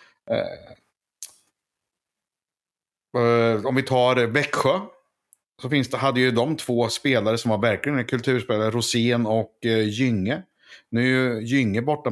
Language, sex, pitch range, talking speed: Swedish, male, 110-130 Hz, 130 wpm